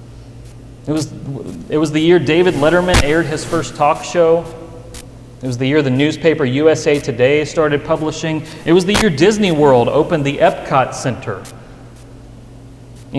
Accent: American